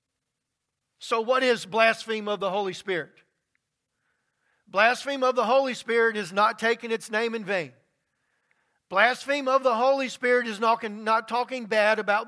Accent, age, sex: American, 40-59, male